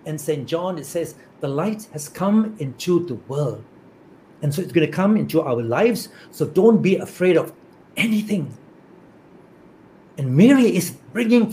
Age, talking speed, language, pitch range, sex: 60-79, 160 wpm, English, 160-220 Hz, male